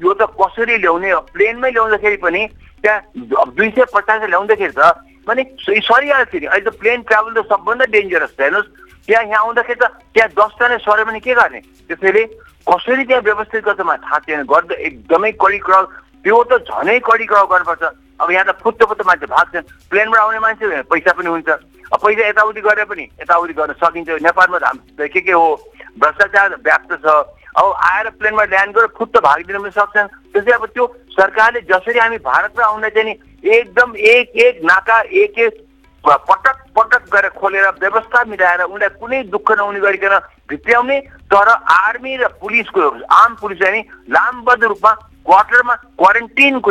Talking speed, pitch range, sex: 75 wpm, 195-245 Hz, male